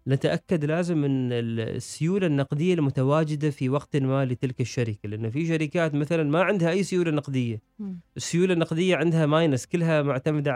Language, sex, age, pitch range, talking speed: Arabic, male, 30-49, 130-165 Hz, 150 wpm